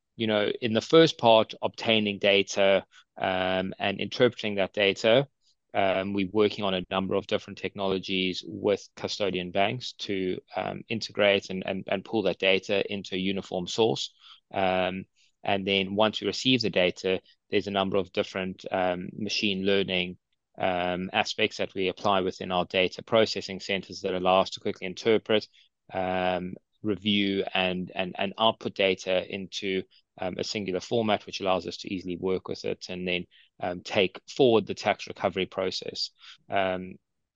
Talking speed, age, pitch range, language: 160 wpm, 20-39, 95-105 Hz, English